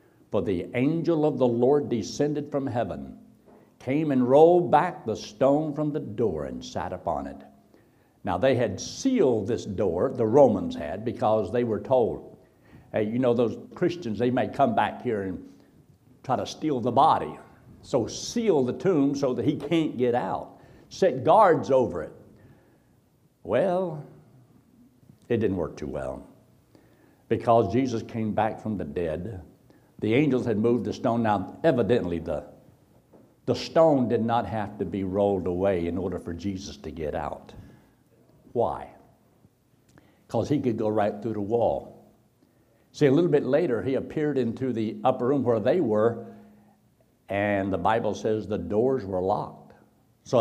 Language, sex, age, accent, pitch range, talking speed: English, male, 60-79, American, 100-135 Hz, 160 wpm